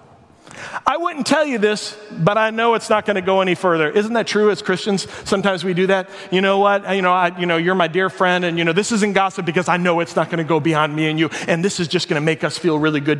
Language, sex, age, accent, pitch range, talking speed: English, male, 30-49, American, 170-210 Hz, 295 wpm